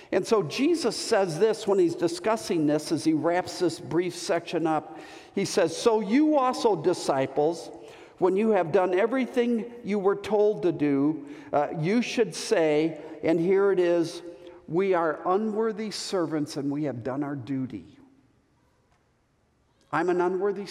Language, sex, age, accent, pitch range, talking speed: English, male, 50-69, American, 145-190 Hz, 155 wpm